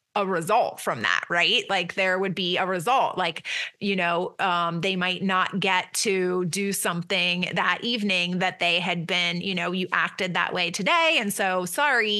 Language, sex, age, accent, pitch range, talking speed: English, female, 30-49, American, 185-225 Hz, 185 wpm